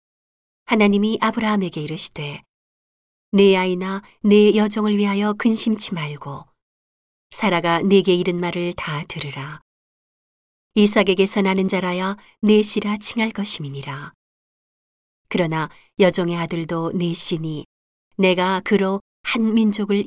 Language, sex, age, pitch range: Korean, female, 40-59, 165-210 Hz